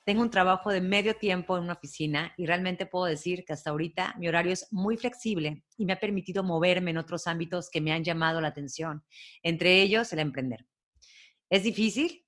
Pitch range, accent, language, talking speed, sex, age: 155-200 Hz, Mexican, Spanish, 200 wpm, female, 30-49